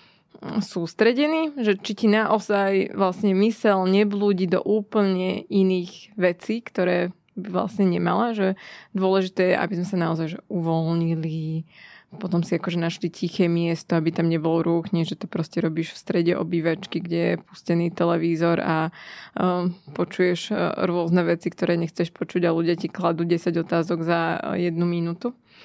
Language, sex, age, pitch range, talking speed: Slovak, female, 20-39, 175-200 Hz, 145 wpm